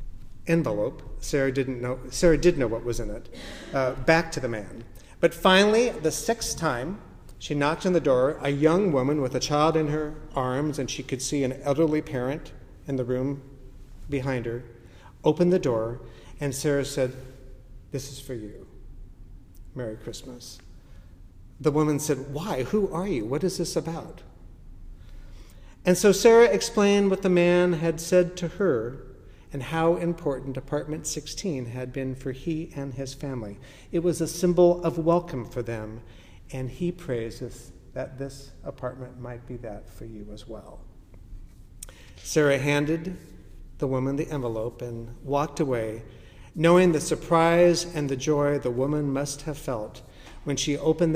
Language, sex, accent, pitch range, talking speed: English, male, American, 115-155 Hz, 160 wpm